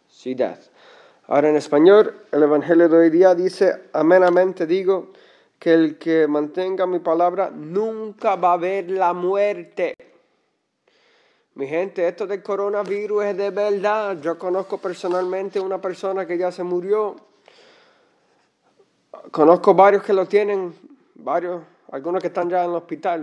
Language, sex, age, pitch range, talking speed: English, male, 30-49, 180-255 Hz, 135 wpm